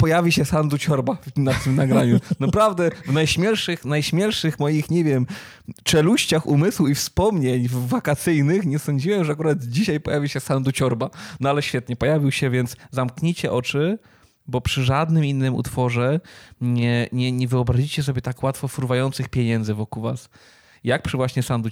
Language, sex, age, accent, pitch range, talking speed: Polish, male, 20-39, native, 125-155 Hz, 155 wpm